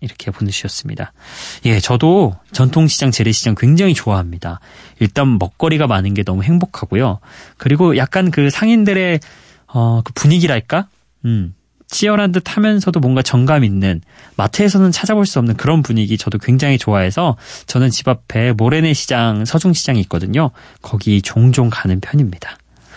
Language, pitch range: Korean, 110-155 Hz